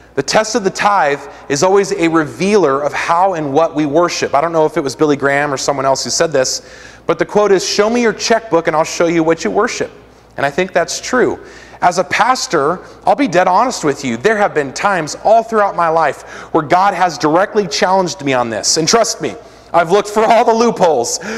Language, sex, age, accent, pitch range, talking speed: English, male, 30-49, American, 160-205 Hz, 235 wpm